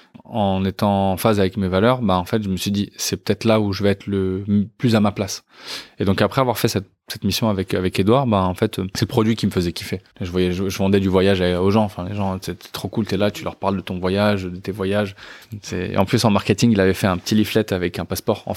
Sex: male